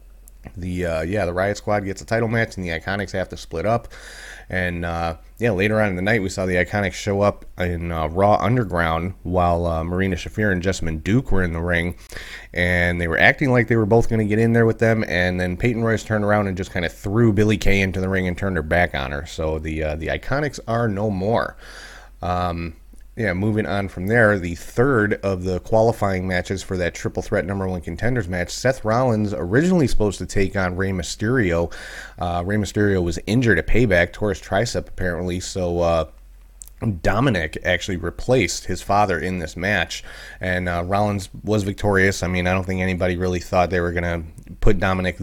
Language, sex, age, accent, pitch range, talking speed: English, male, 30-49, American, 85-105 Hz, 205 wpm